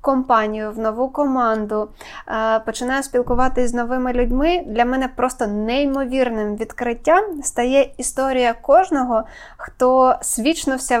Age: 20-39